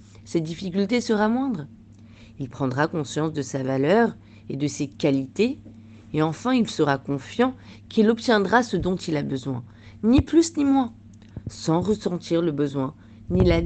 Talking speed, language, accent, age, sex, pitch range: 160 wpm, French, French, 40-59, female, 130-200 Hz